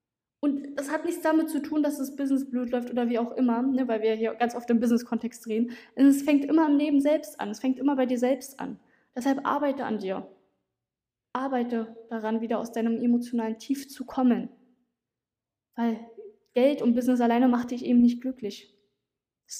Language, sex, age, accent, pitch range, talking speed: German, female, 20-39, German, 220-255 Hz, 200 wpm